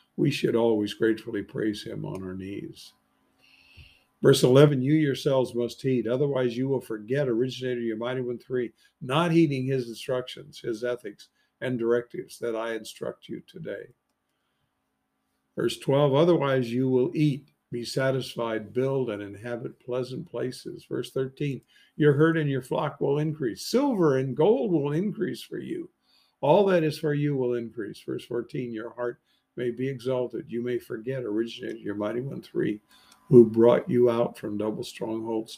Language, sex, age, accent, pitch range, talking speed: English, male, 50-69, American, 115-140 Hz, 160 wpm